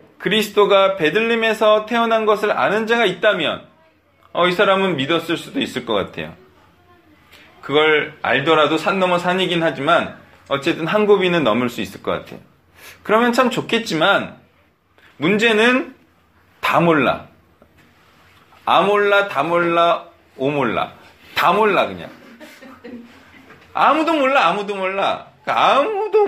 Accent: native